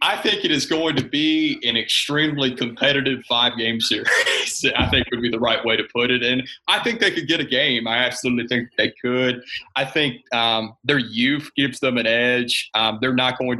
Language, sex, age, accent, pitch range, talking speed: English, male, 30-49, American, 115-130 Hz, 210 wpm